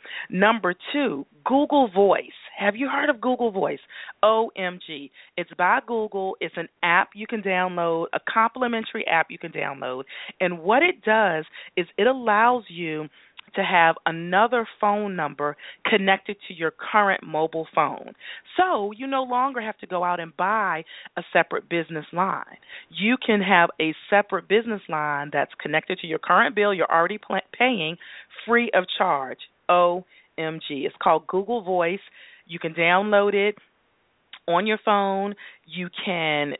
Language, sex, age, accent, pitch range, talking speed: English, female, 40-59, American, 170-220 Hz, 150 wpm